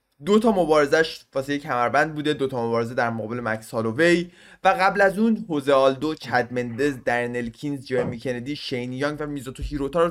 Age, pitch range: 20-39, 120-190 Hz